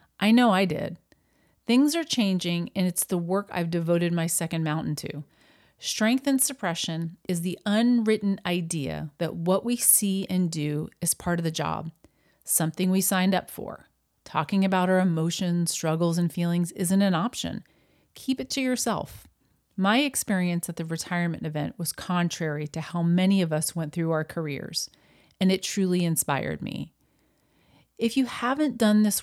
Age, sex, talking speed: 40-59, female, 165 wpm